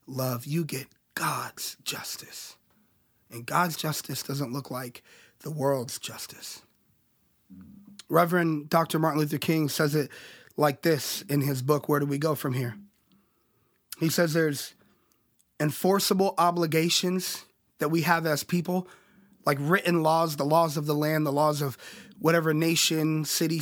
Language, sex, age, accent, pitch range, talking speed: English, male, 30-49, American, 140-165 Hz, 140 wpm